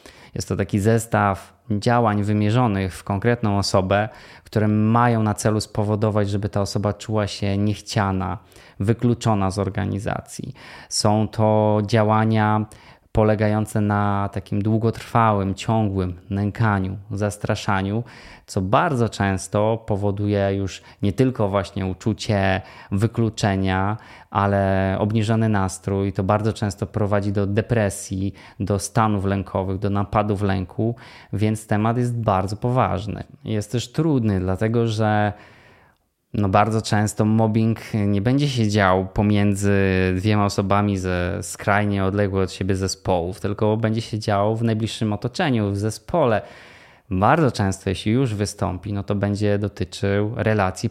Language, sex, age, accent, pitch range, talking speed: Polish, male, 20-39, native, 100-110 Hz, 120 wpm